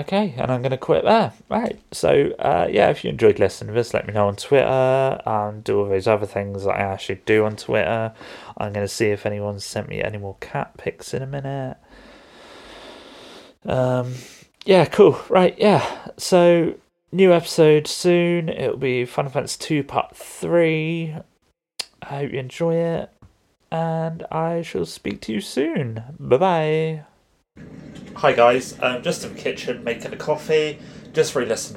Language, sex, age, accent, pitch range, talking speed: English, male, 30-49, British, 110-155 Hz, 170 wpm